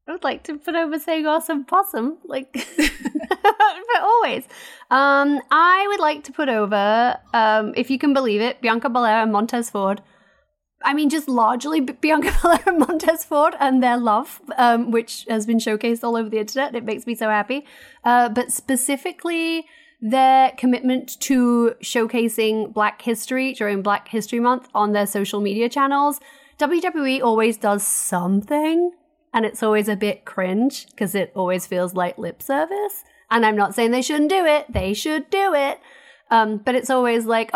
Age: 30-49